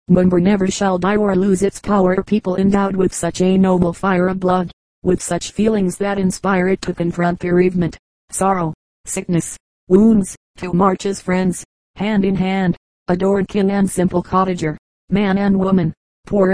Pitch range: 175-195 Hz